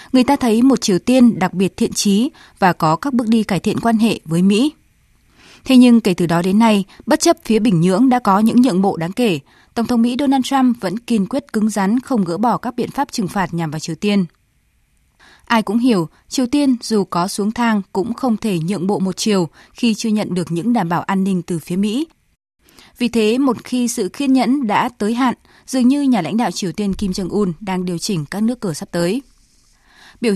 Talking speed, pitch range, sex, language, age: 235 wpm, 185-240 Hz, female, Vietnamese, 20-39